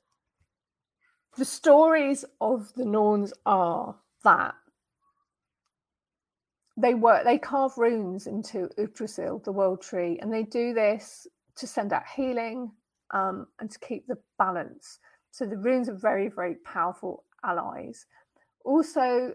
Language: English